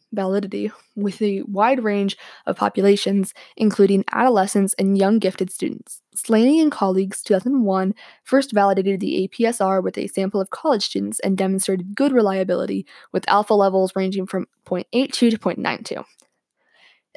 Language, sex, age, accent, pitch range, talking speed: English, female, 10-29, American, 195-230 Hz, 135 wpm